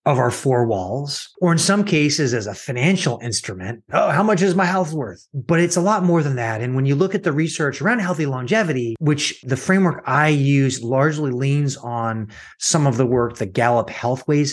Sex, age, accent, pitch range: male, 30-49, American, 120-155 Hz